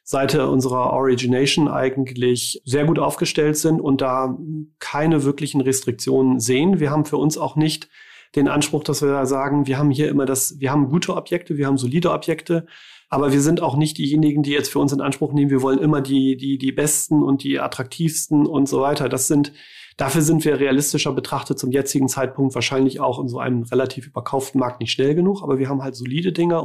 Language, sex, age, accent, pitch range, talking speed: German, male, 40-59, German, 130-150 Hz, 205 wpm